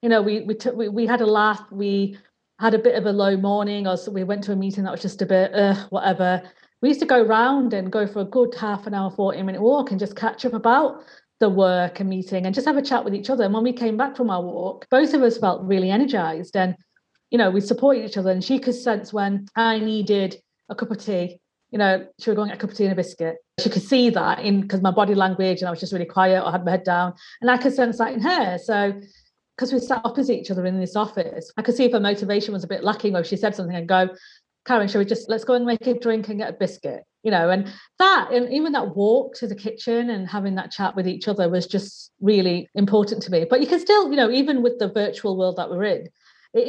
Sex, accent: female, British